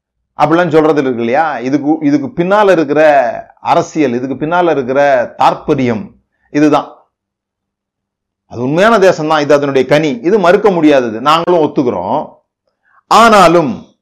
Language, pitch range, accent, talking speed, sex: Tamil, 145-195 Hz, native, 110 wpm, male